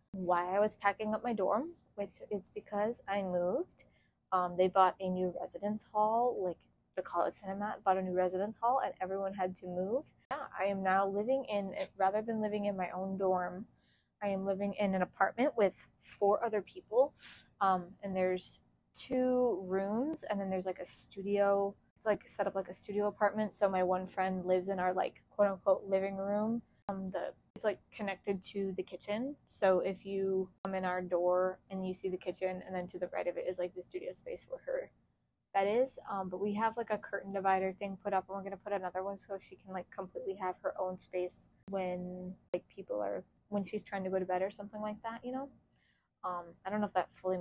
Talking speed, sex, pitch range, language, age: 220 wpm, female, 185-210 Hz, English, 20-39